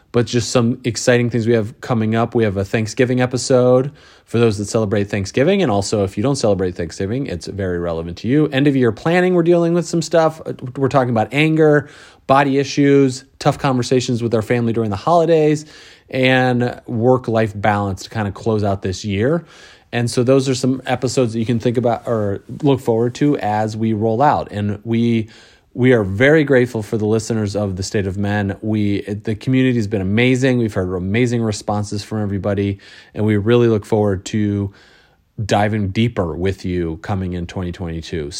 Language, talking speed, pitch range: English, 190 wpm, 105-135 Hz